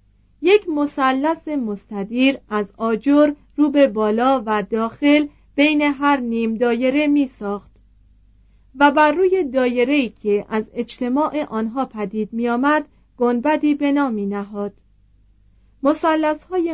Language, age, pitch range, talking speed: Persian, 40-59, 210-290 Hz, 120 wpm